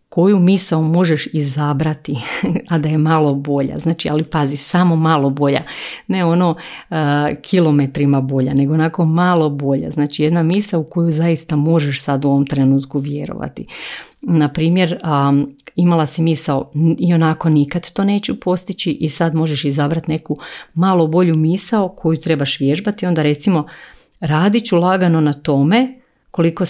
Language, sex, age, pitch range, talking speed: Croatian, female, 50-69, 145-175 Hz, 150 wpm